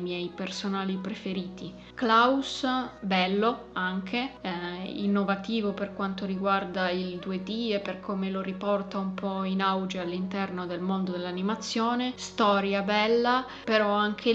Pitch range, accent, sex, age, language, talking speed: 190-215 Hz, native, female, 20-39, Italian, 125 wpm